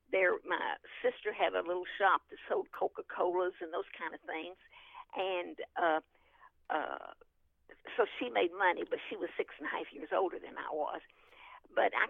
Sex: female